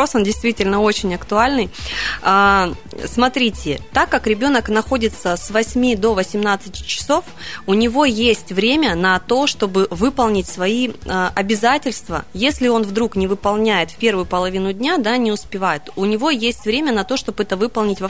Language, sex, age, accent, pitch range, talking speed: Russian, female, 20-39, native, 190-230 Hz, 150 wpm